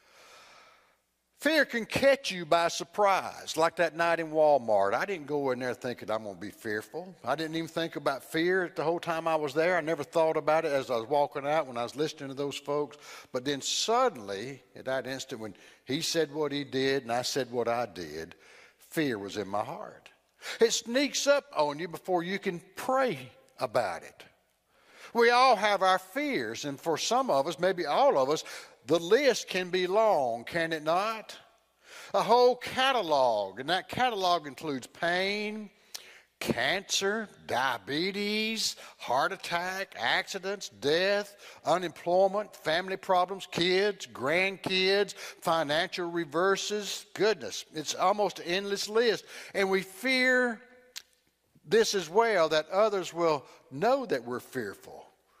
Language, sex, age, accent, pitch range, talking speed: English, male, 60-79, American, 145-205 Hz, 160 wpm